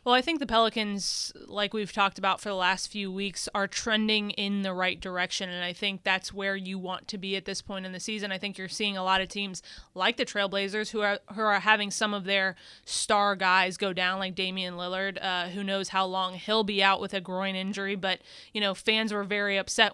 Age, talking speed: 20-39, 240 wpm